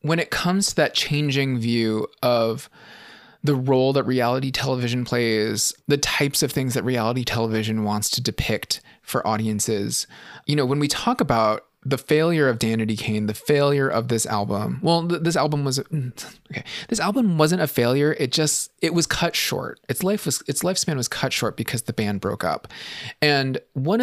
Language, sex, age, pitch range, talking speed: English, male, 20-39, 115-150 Hz, 180 wpm